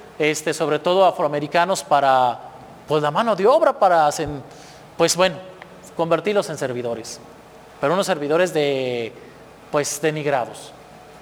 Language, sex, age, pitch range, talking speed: Spanish, male, 40-59, 155-220 Hz, 125 wpm